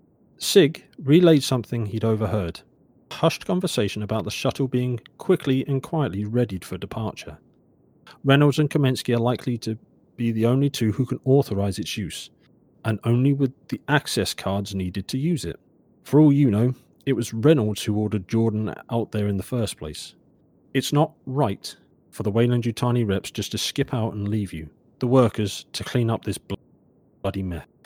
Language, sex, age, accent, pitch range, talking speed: English, male, 40-59, British, 105-135 Hz, 175 wpm